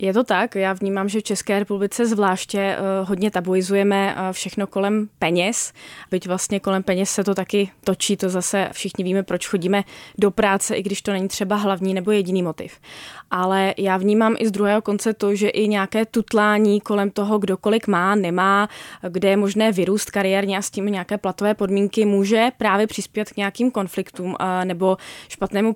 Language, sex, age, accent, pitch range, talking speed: Czech, female, 20-39, native, 190-210 Hz, 180 wpm